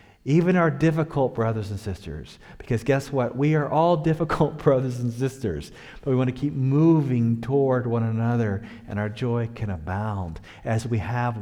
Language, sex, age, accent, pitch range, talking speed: English, male, 40-59, American, 115-150 Hz, 175 wpm